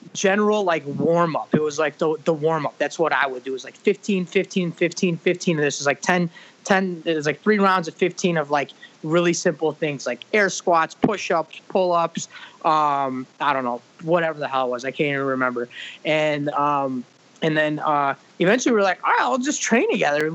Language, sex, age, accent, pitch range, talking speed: English, male, 20-39, American, 155-205 Hz, 205 wpm